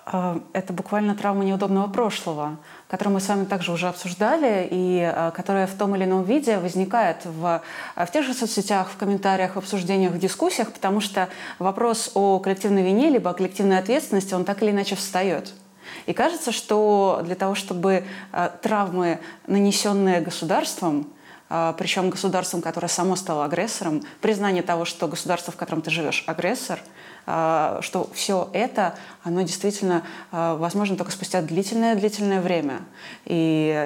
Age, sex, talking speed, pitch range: 20-39, female, 145 wpm, 175-200 Hz